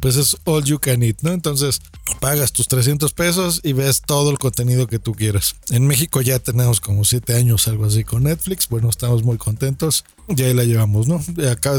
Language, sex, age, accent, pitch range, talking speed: Spanish, male, 40-59, Mexican, 115-155 Hz, 210 wpm